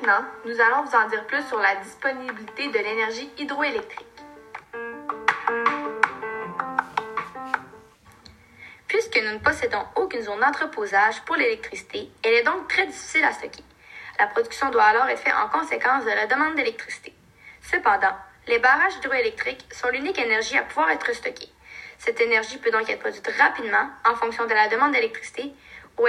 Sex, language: female, French